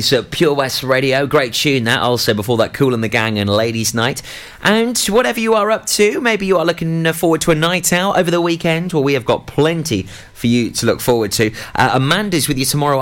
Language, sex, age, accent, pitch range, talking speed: English, male, 30-49, British, 115-150 Hz, 235 wpm